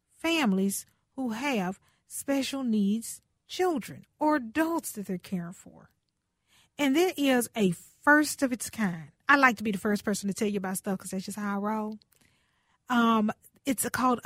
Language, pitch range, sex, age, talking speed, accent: English, 205-275 Hz, female, 40-59, 175 wpm, American